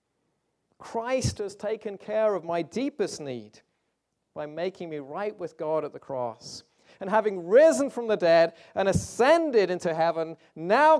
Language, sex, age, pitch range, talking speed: English, male, 40-59, 150-220 Hz, 155 wpm